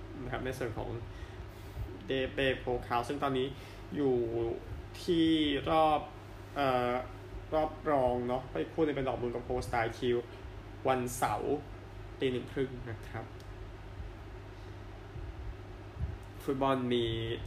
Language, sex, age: Thai, male, 20-39